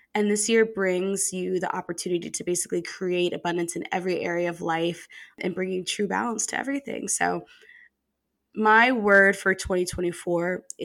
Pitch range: 175-210 Hz